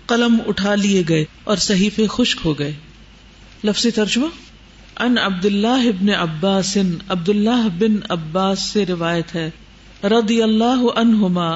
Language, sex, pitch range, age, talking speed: Urdu, female, 175-225 Hz, 50-69, 130 wpm